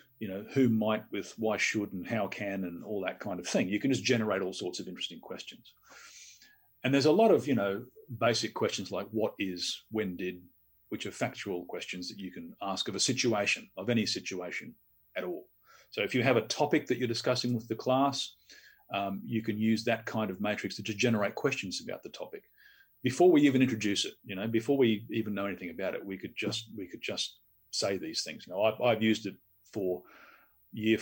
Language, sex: English, male